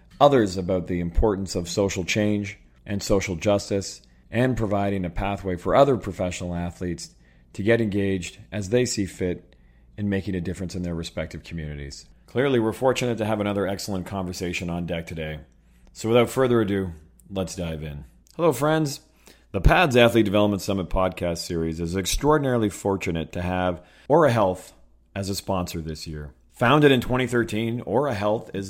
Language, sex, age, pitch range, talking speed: English, male, 40-59, 90-110 Hz, 165 wpm